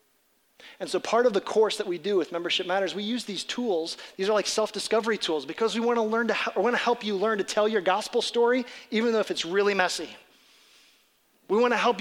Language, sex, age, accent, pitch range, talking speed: English, male, 30-49, American, 180-225 Hz, 220 wpm